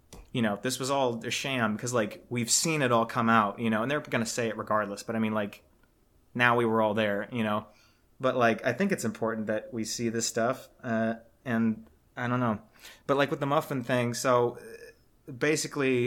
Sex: male